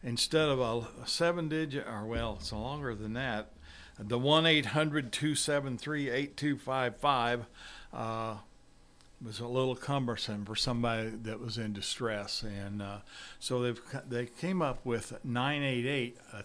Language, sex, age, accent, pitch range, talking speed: English, male, 50-69, American, 110-130 Hz, 160 wpm